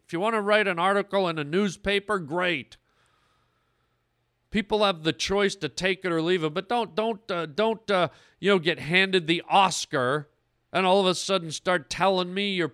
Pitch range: 150-215 Hz